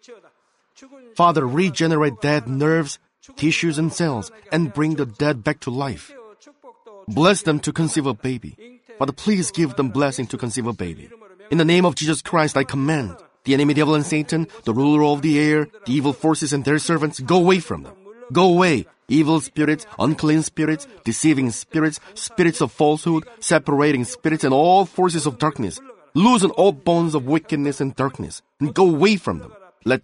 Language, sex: Korean, male